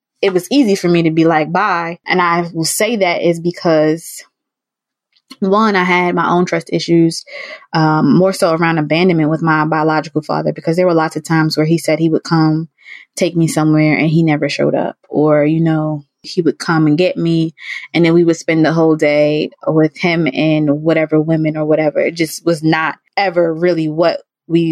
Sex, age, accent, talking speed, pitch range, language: female, 20-39, American, 205 wpm, 155-180 Hz, English